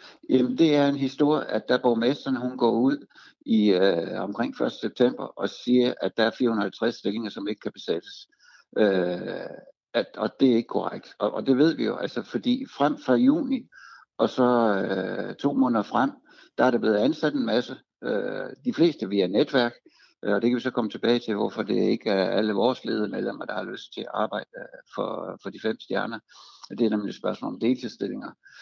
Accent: native